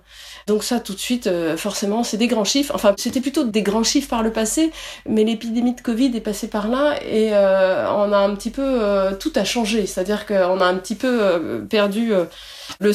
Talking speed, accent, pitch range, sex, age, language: 215 wpm, French, 195-260 Hz, female, 30-49, French